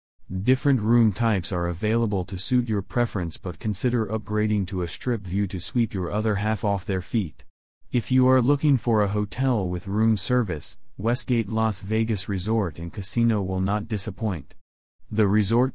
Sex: male